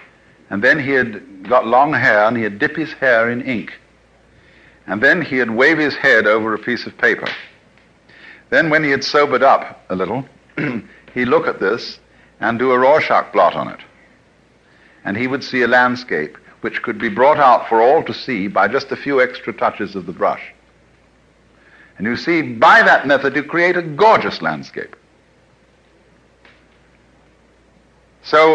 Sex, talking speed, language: male, 170 wpm, English